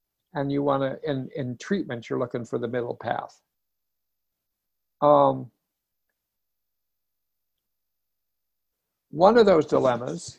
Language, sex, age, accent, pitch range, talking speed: English, male, 60-79, American, 135-180 Hz, 105 wpm